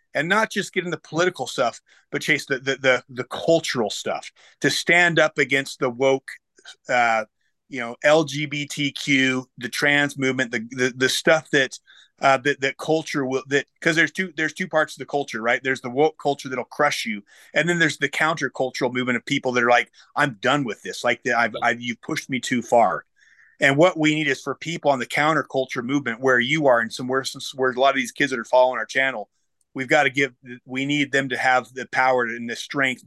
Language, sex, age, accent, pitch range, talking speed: English, male, 30-49, American, 125-155 Hz, 225 wpm